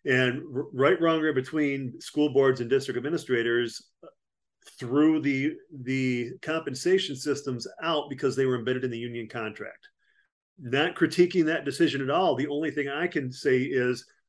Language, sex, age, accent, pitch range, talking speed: English, male, 40-59, American, 125-145 Hz, 145 wpm